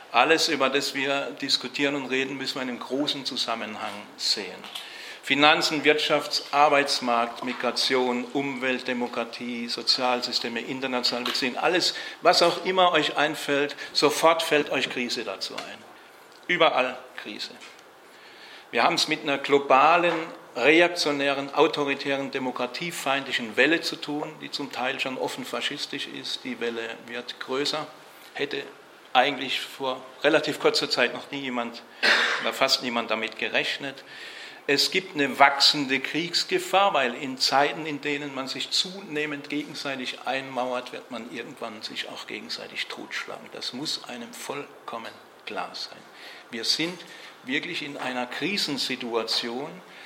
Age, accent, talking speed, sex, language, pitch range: 40-59, German, 130 wpm, male, German, 125-150 Hz